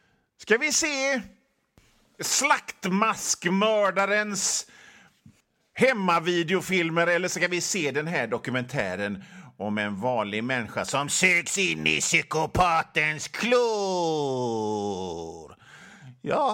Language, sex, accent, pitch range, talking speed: Swedish, male, native, 125-200 Hz, 85 wpm